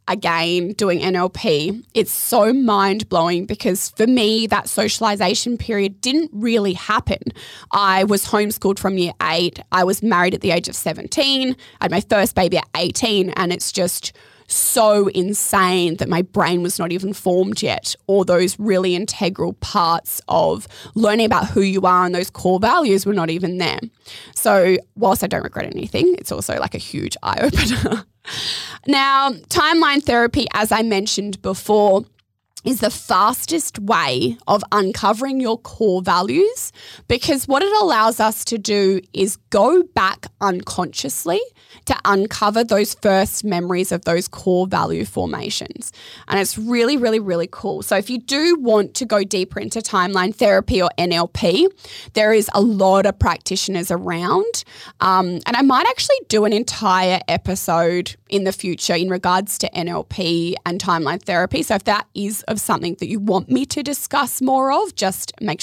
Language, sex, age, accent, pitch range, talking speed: English, female, 20-39, Australian, 185-225 Hz, 165 wpm